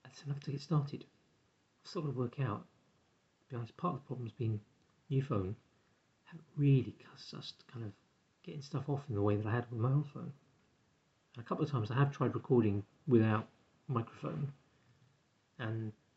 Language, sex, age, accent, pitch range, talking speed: English, male, 40-59, British, 120-150 Hz, 205 wpm